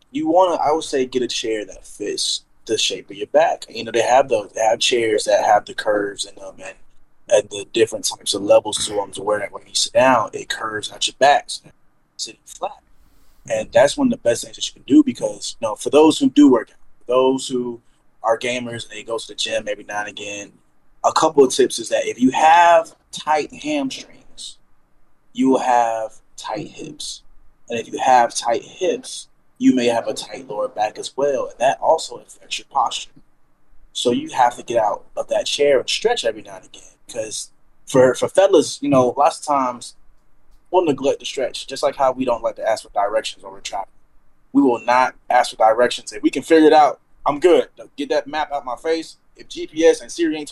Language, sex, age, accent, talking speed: English, male, 20-39, American, 225 wpm